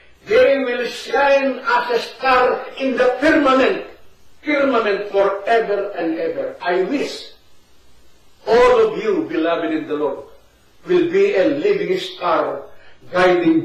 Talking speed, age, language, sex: 125 wpm, 50-69, Filipino, male